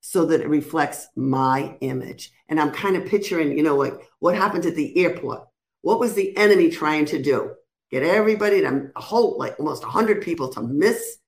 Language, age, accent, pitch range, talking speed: English, 60-79, American, 145-210 Hz, 190 wpm